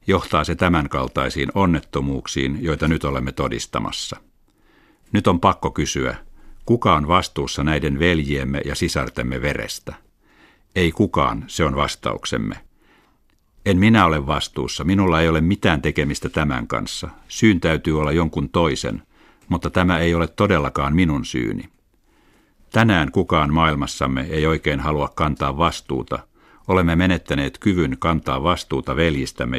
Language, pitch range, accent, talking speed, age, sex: Finnish, 70-85 Hz, native, 125 wpm, 60-79, male